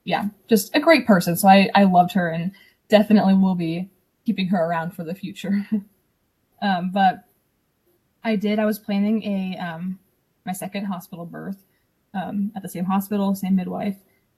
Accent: American